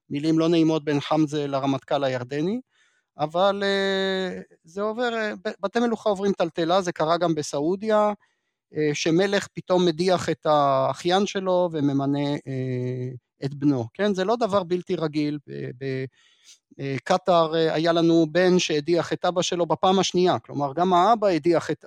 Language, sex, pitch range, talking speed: Hebrew, male, 150-195 Hz, 130 wpm